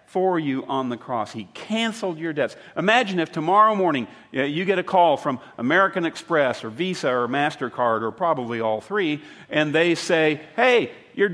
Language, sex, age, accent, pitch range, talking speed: English, male, 50-69, American, 135-200 Hz, 185 wpm